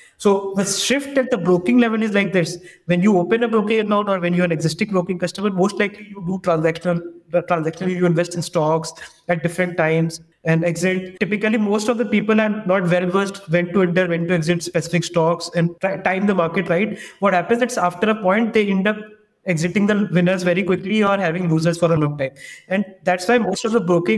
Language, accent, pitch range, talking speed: English, Indian, 170-215 Hz, 225 wpm